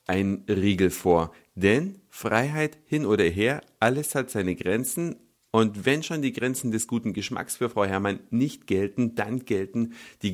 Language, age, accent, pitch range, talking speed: German, 50-69, German, 100-140 Hz, 165 wpm